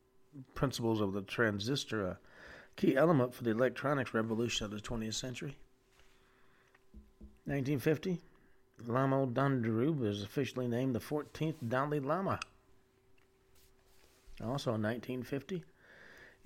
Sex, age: male, 40-59